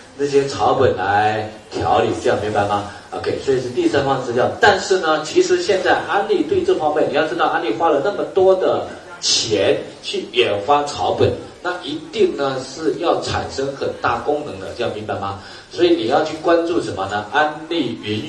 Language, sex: Chinese, male